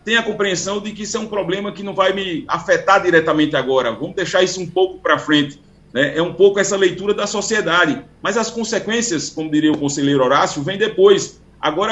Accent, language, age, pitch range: Brazilian, Portuguese, 40-59, 155-205 Hz